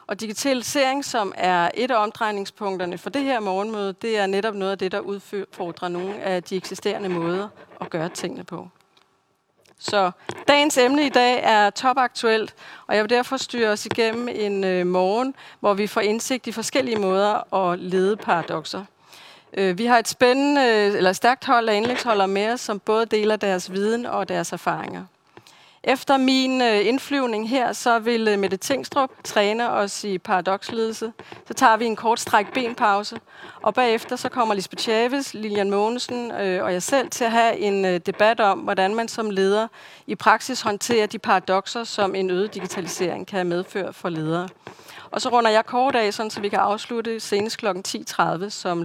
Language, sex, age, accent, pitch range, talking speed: Danish, female, 40-59, native, 190-235 Hz, 170 wpm